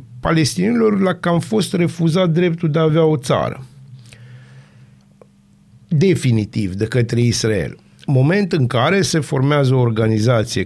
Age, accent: 50-69, native